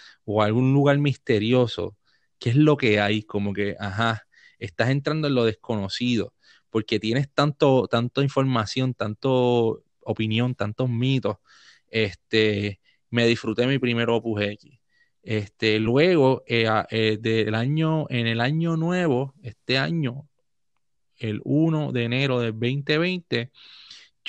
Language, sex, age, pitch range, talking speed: English, male, 30-49, 115-150 Hz, 125 wpm